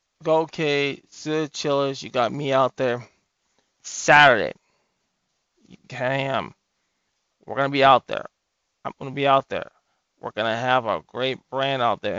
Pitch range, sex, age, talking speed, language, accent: 125-140 Hz, male, 20-39, 175 wpm, English, American